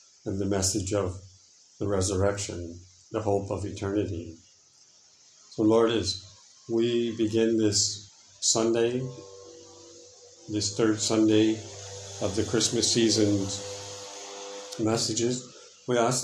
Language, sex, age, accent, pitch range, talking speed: English, male, 50-69, American, 100-110 Hz, 100 wpm